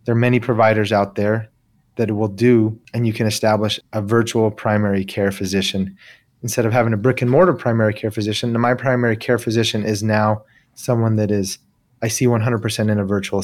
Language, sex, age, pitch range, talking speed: English, male, 30-49, 110-125 Hz, 190 wpm